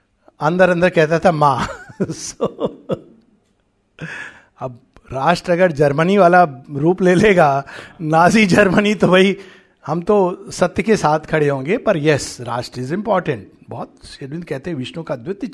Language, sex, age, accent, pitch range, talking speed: Hindi, male, 60-79, native, 155-220 Hz, 140 wpm